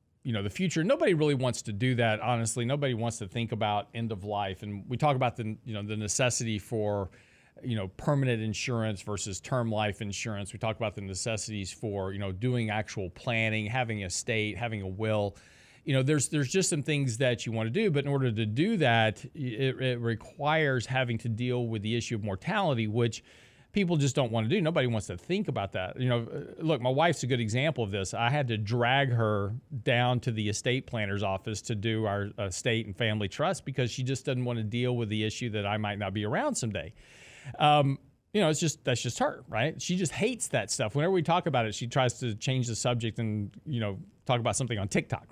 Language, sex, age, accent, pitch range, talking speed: English, male, 40-59, American, 110-140 Hz, 230 wpm